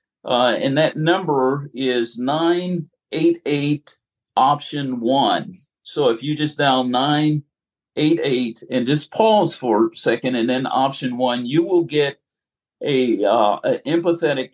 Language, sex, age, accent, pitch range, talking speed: English, male, 50-69, American, 125-160 Hz, 115 wpm